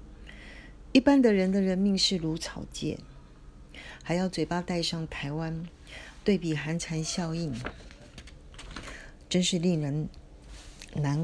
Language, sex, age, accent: Chinese, female, 40-59, native